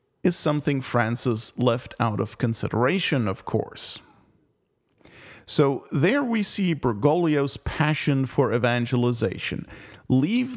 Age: 40-59